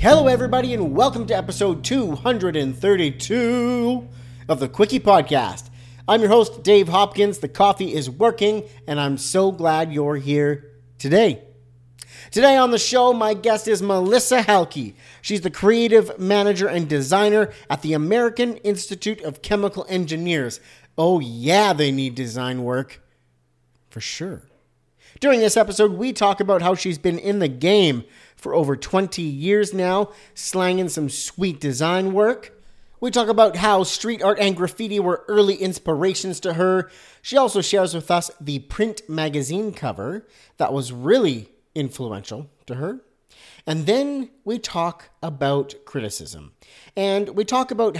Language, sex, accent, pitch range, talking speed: English, male, American, 140-210 Hz, 145 wpm